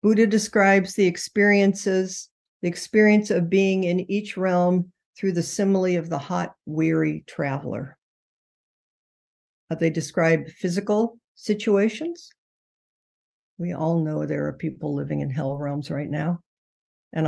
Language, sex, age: English, female, 60-79